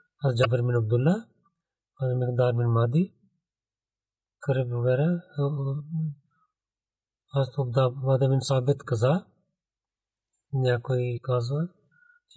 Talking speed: 85 wpm